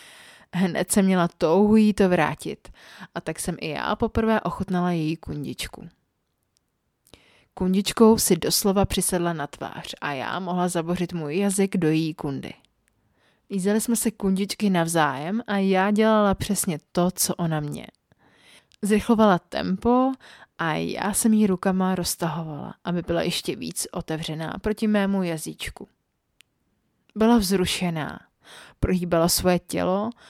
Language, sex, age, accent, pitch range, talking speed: Czech, female, 20-39, native, 170-200 Hz, 130 wpm